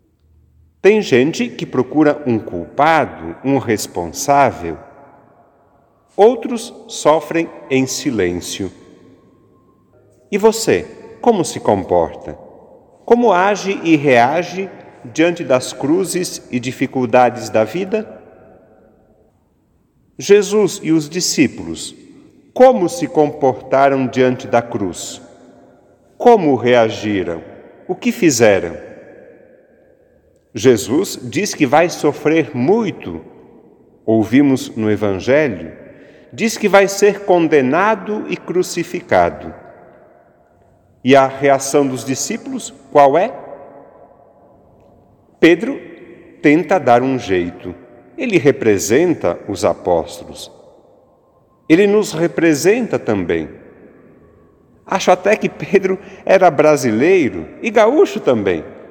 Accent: Brazilian